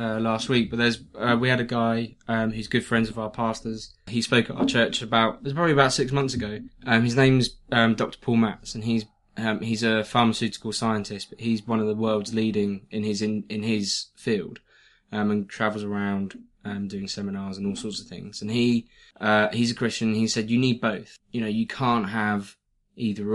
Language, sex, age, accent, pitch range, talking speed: English, male, 20-39, British, 105-120 Hz, 220 wpm